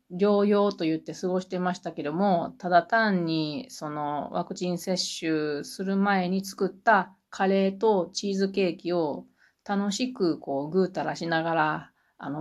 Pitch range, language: 165-220 Hz, Japanese